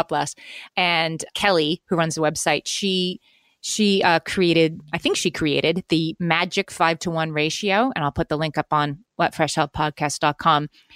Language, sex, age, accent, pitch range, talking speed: English, female, 30-49, American, 155-200 Hz, 165 wpm